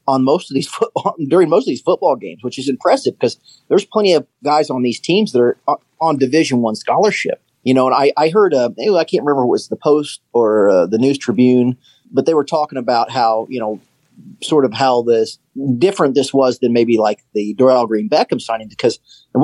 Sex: male